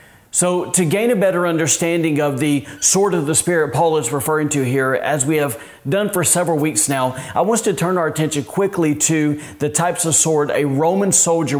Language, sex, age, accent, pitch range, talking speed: English, male, 40-59, American, 140-165 Hz, 205 wpm